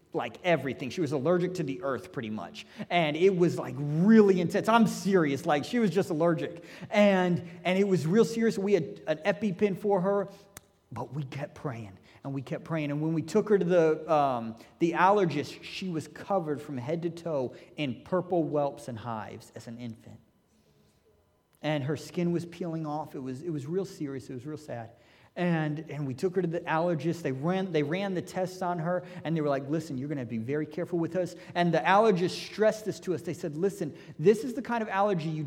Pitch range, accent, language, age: 145-185 Hz, American, English, 30-49